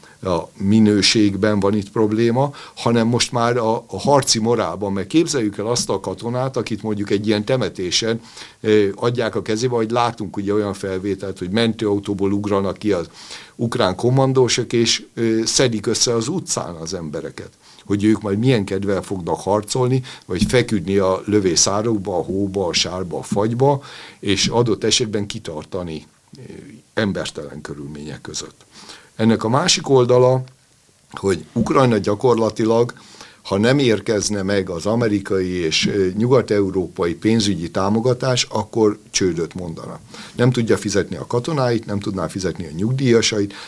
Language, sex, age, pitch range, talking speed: Hungarian, male, 60-79, 100-120 Hz, 135 wpm